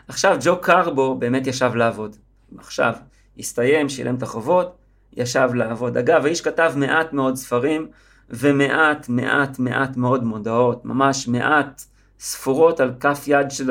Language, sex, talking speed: Hebrew, male, 135 wpm